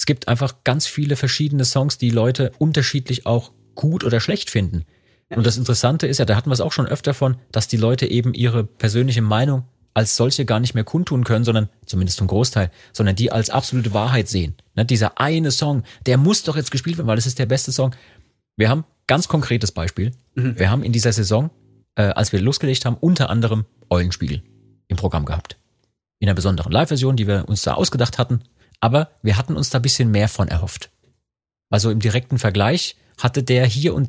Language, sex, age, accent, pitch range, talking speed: German, male, 30-49, German, 105-130 Hz, 210 wpm